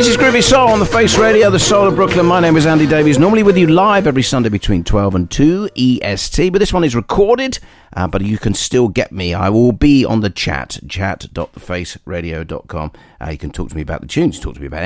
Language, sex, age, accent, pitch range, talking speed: English, male, 40-59, British, 85-140 Hz, 240 wpm